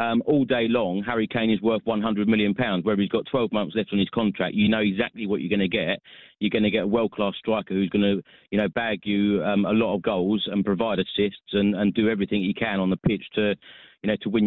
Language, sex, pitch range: English, male, 95-110 Hz